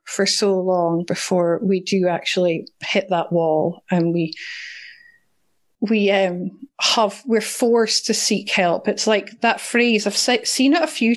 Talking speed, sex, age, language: 160 wpm, female, 30-49, English